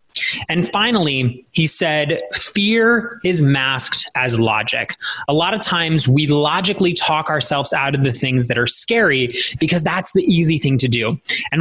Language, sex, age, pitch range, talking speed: English, male, 20-39, 130-175 Hz, 165 wpm